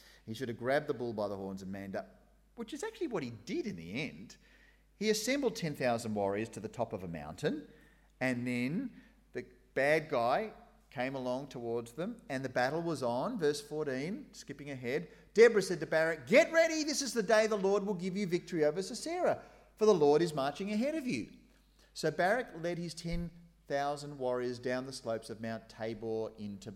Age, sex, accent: 40-59, male, Australian